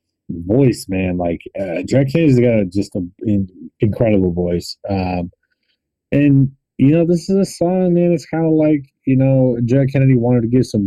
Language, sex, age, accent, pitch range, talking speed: English, male, 30-49, American, 95-120 Hz, 175 wpm